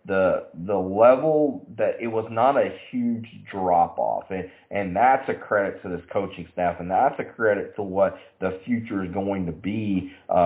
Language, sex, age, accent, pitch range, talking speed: English, male, 30-49, American, 95-135 Hz, 185 wpm